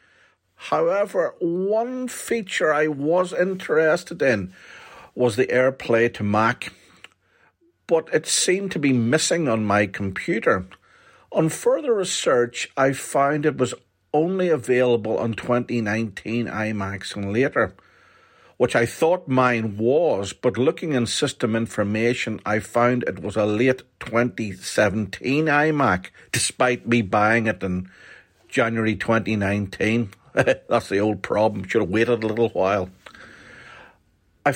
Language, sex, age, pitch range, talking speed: English, male, 50-69, 110-140 Hz, 125 wpm